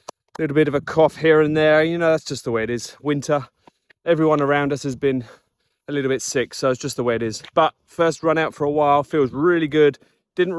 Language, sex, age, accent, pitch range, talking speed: English, male, 30-49, British, 140-170 Hz, 255 wpm